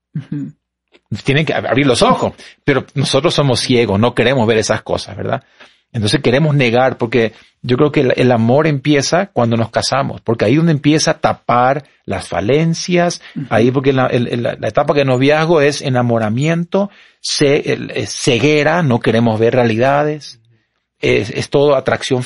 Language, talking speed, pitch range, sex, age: Spanish, 155 wpm, 115-150 Hz, male, 40-59